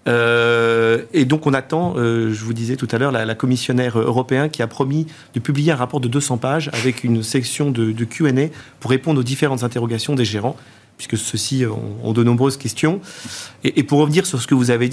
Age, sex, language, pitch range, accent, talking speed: 40-59, male, French, 115-150 Hz, French, 220 wpm